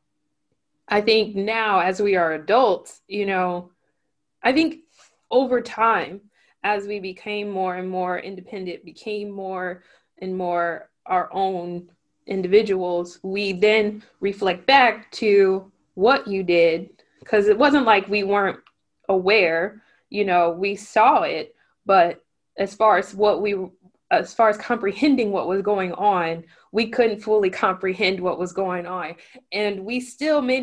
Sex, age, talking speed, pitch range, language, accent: female, 20-39, 145 wpm, 185-220 Hz, English, American